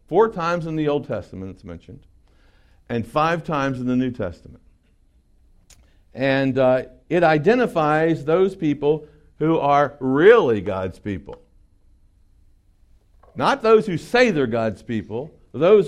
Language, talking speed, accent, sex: English, 130 wpm, American, male